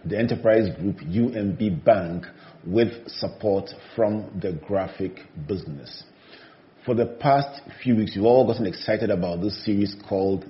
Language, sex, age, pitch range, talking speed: English, male, 40-59, 100-120 Hz, 135 wpm